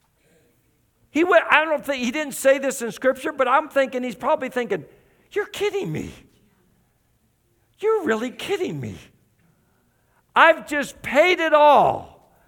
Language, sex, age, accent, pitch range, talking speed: English, male, 50-69, American, 155-265 Hz, 140 wpm